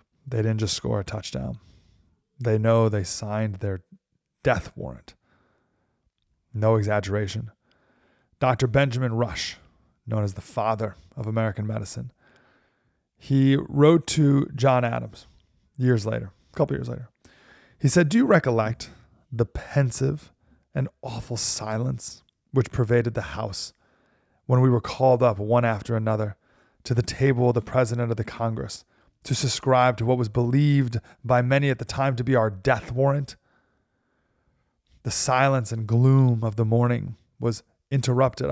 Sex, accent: male, American